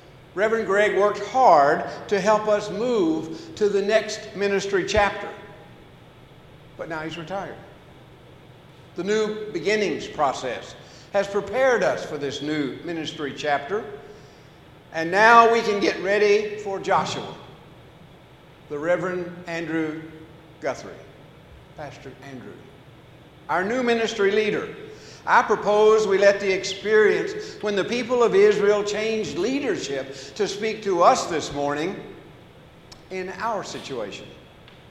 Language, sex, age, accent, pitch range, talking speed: English, male, 60-79, American, 165-215 Hz, 120 wpm